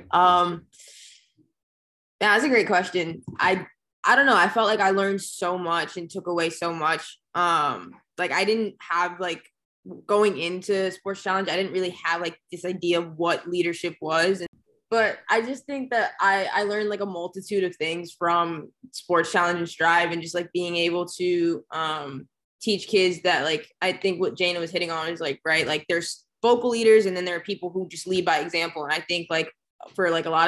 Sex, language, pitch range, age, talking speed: female, English, 170-195 Hz, 20-39, 205 wpm